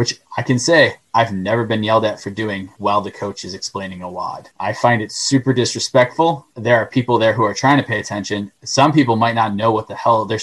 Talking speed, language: 240 wpm, English